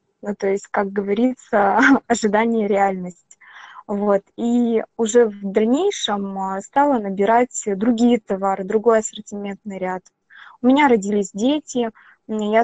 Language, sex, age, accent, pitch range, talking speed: Russian, female, 20-39, native, 200-235 Hz, 115 wpm